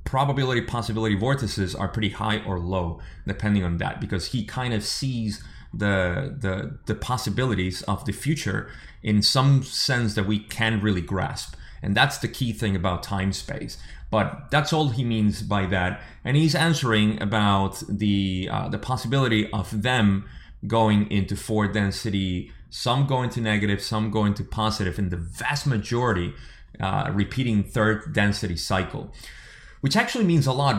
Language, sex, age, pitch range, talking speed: English, male, 30-49, 100-120 Hz, 150 wpm